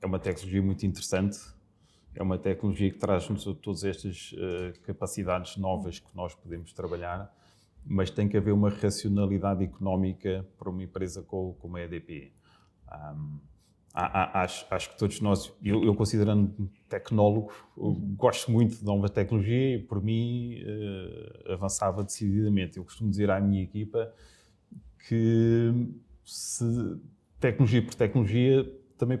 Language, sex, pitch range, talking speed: Portuguese, male, 95-110 Hz, 140 wpm